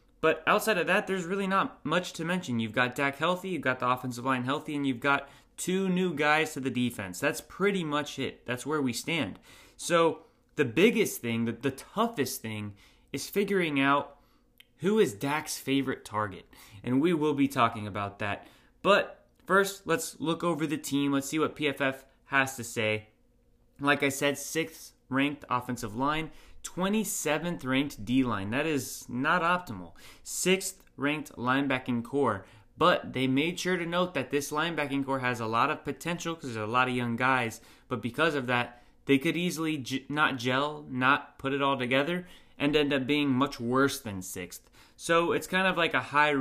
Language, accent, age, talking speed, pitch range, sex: English, American, 20-39, 185 wpm, 125-155 Hz, male